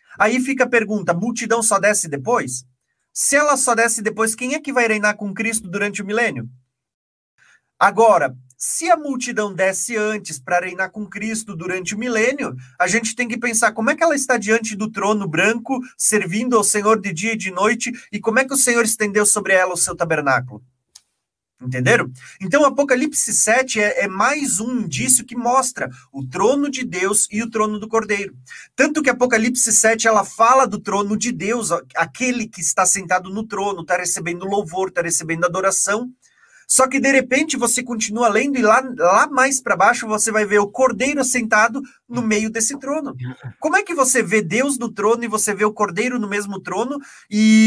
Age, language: 30-49, Portuguese